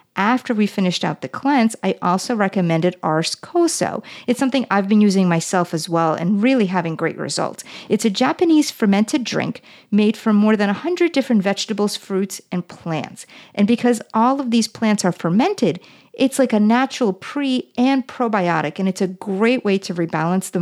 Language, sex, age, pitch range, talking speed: English, female, 50-69, 175-235 Hz, 180 wpm